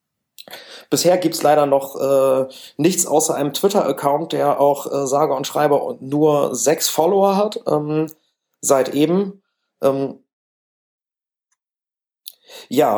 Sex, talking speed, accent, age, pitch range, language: male, 125 wpm, German, 40-59, 120-145 Hz, German